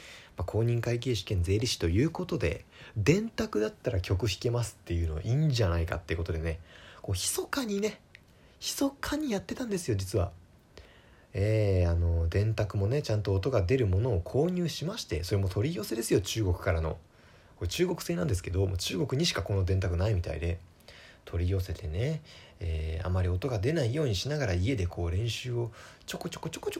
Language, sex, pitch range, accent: Japanese, male, 90-125 Hz, native